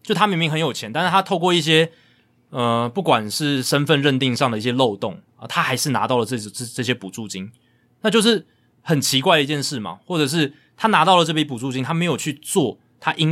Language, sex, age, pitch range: Chinese, male, 20-39, 115-150 Hz